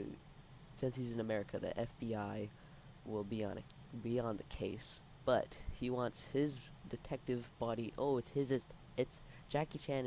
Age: 20-39